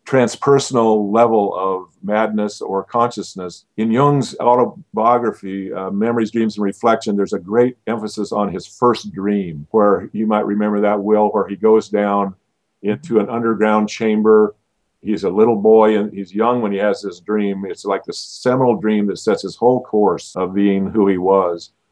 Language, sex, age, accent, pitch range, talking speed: English, male, 50-69, American, 100-110 Hz, 170 wpm